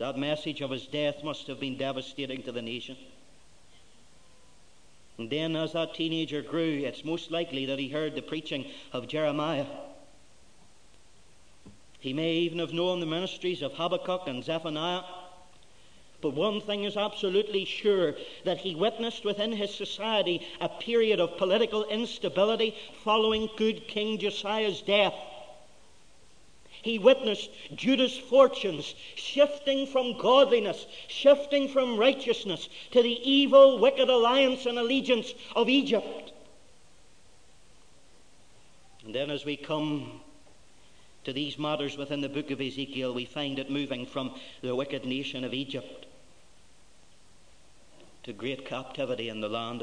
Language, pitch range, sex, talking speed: English, 135-220 Hz, male, 130 wpm